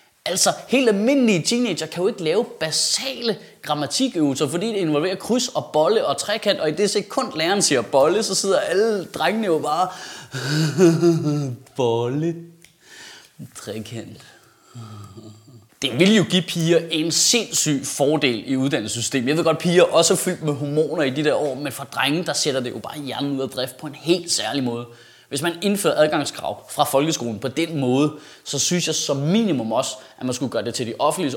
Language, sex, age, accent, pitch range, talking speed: Danish, male, 30-49, native, 140-185 Hz, 185 wpm